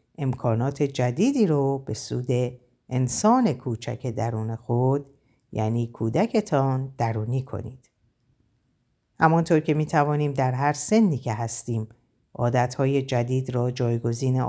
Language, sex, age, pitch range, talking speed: Persian, female, 50-69, 125-190 Hz, 105 wpm